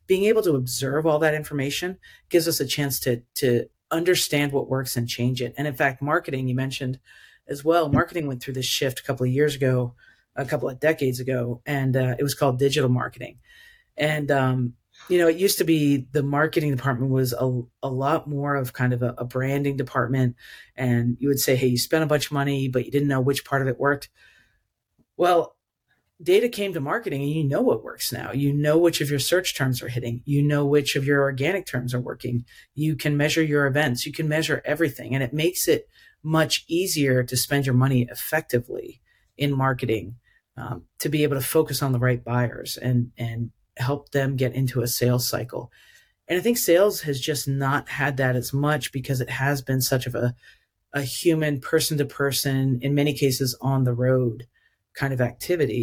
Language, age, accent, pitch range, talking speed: English, 40-59, American, 125-150 Hz, 210 wpm